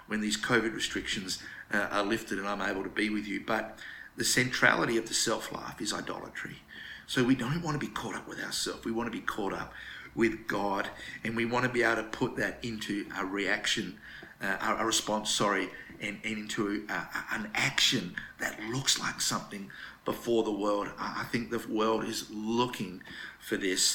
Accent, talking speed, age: Australian, 185 wpm, 50-69